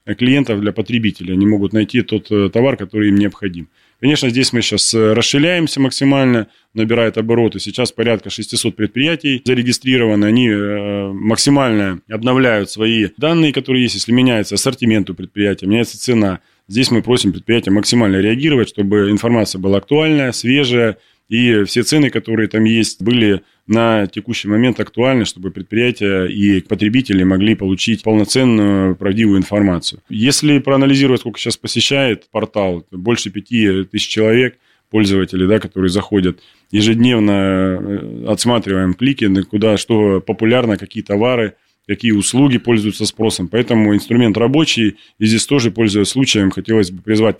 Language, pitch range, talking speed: Russian, 100-120 Hz, 135 wpm